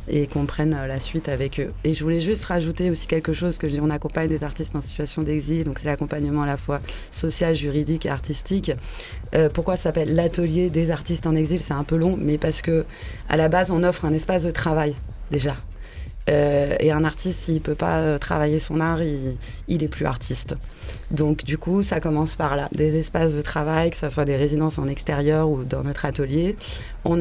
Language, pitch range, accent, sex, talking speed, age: English, 145-170 Hz, French, female, 215 wpm, 20-39